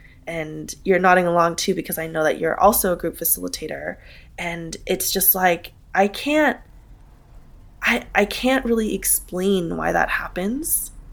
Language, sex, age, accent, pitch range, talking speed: English, female, 20-39, American, 165-205 Hz, 150 wpm